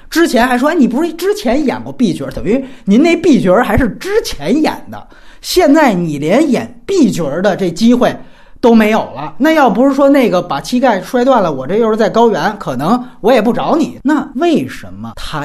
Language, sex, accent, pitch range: Chinese, male, native, 185-270 Hz